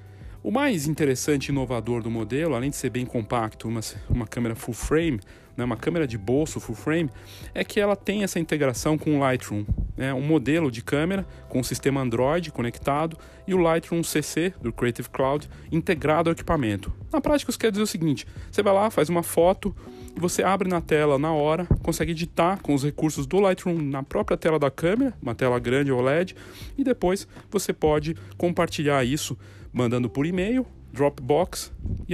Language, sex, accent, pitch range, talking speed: Portuguese, male, Brazilian, 115-160 Hz, 185 wpm